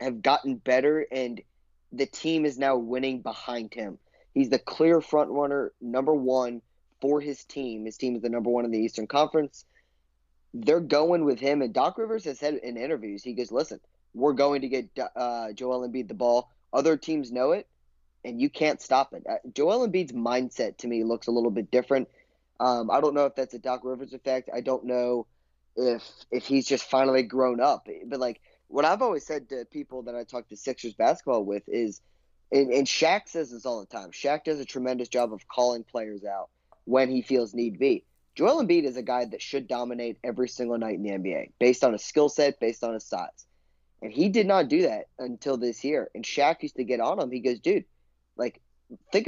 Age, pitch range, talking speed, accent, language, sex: 20-39, 115-140 Hz, 215 wpm, American, English, male